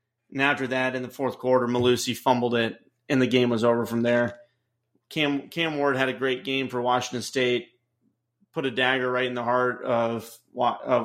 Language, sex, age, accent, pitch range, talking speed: English, male, 30-49, American, 120-140 Hz, 195 wpm